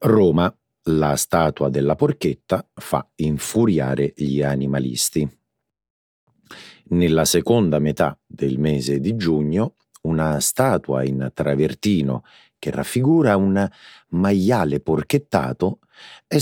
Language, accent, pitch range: Italian, native, 70-85 Hz